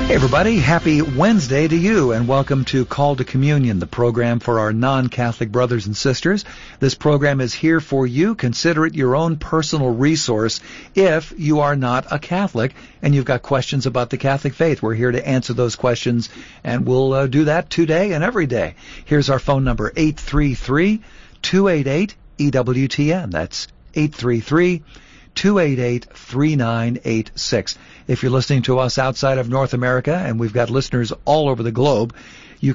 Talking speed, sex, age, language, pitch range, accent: 160 wpm, male, 50-69, English, 120-150 Hz, American